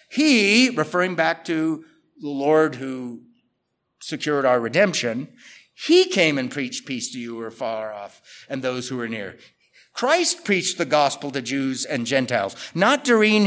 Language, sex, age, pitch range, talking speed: English, male, 50-69, 150-210 Hz, 160 wpm